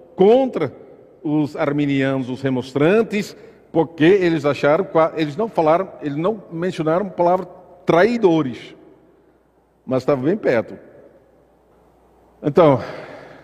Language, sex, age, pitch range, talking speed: Portuguese, male, 50-69, 120-160 Hz, 100 wpm